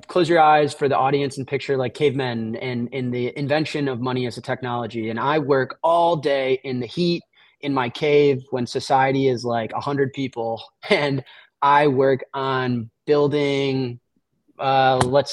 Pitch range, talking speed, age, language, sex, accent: 125-155 Hz, 170 wpm, 30-49, English, male, American